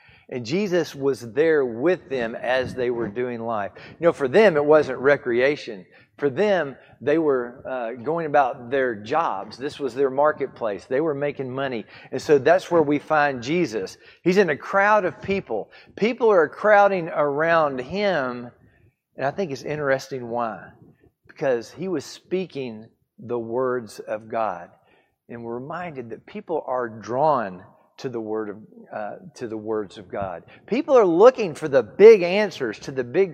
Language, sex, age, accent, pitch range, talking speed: English, male, 40-59, American, 120-170 Hz, 170 wpm